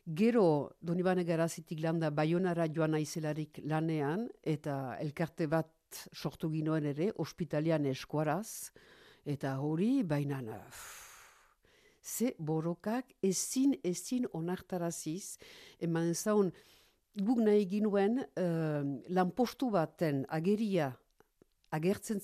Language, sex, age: Spanish, female, 60-79